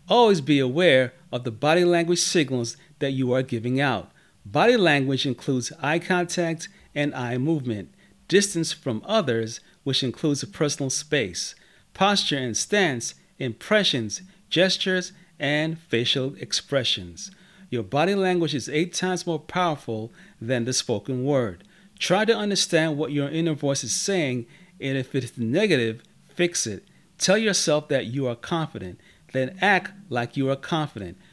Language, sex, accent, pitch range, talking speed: English, male, American, 125-175 Hz, 145 wpm